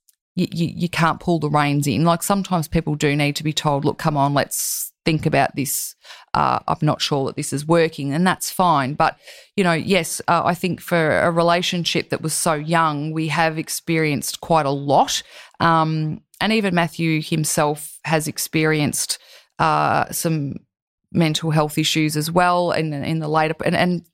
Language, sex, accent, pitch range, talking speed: English, female, Australian, 155-170 Hz, 185 wpm